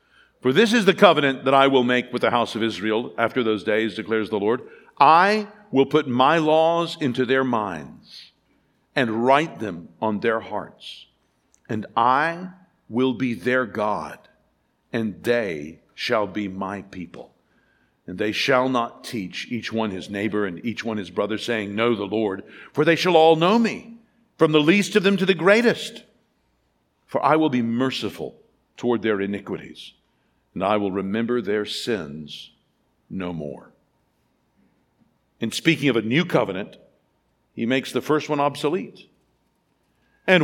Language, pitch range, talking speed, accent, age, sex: English, 105-160 Hz, 160 wpm, American, 50-69, male